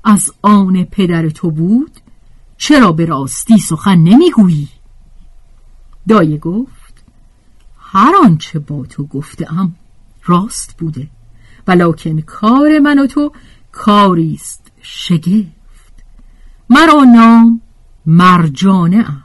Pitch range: 170-250 Hz